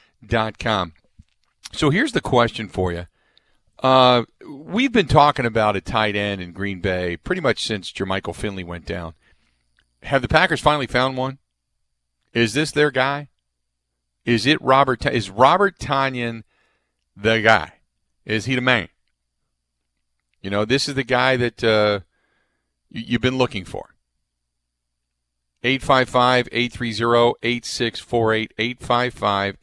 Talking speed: 120 wpm